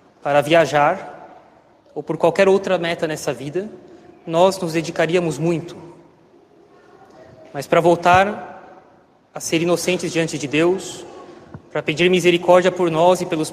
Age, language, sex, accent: 20-39, Portuguese, male, Brazilian